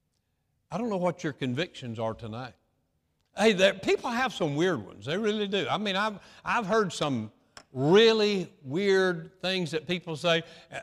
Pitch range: 165-205 Hz